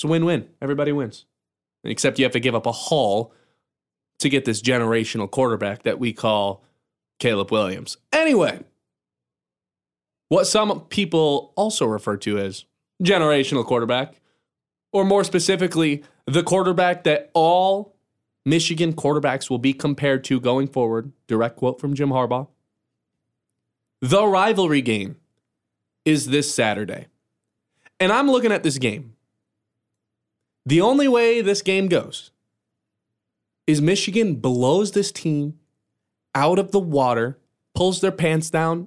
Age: 20-39